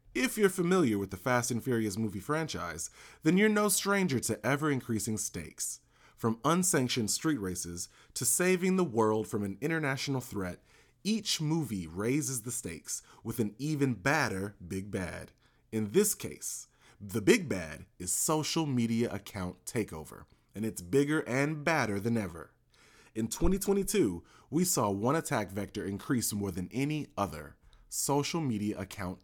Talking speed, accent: 150 wpm, American